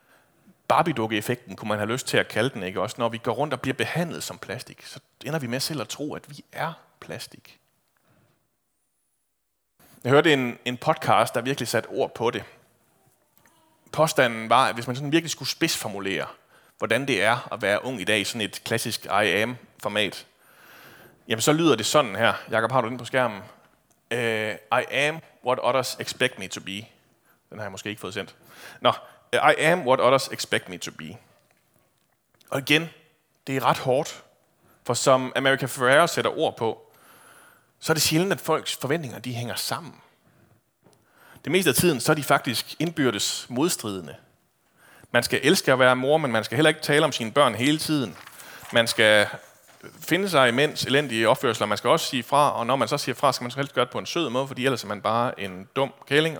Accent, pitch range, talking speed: native, 115-150 Hz, 200 wpm